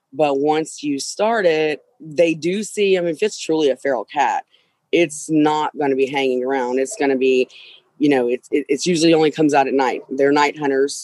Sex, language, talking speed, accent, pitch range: female, English, 215 wpm, American, 140-175 Hz